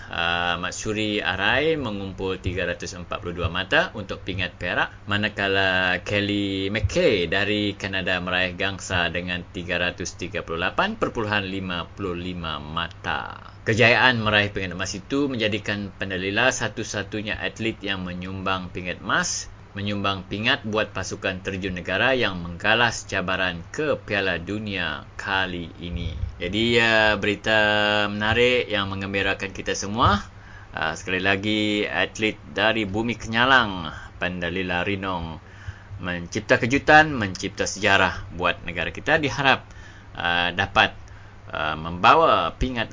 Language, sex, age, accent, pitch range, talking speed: English, male, 30-49, Indonesian, 90-105 Hz, 100 wpm